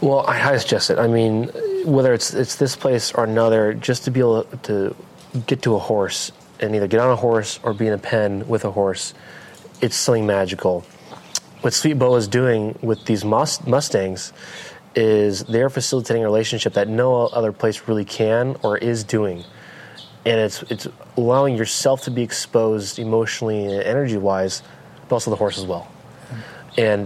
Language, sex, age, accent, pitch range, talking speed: English, male, 20-39, American, 105-125 Hz, 180 wpm